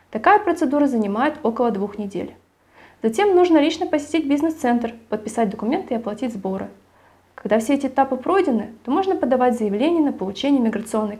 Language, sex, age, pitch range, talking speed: Russian, female, 20-39, 220-295 Hz, 150 wpm